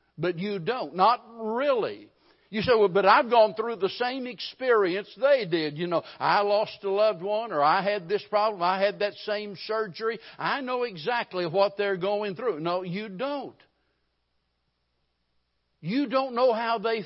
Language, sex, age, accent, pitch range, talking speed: English, male, 60-79, American, 155-220 Hz, 170 wpm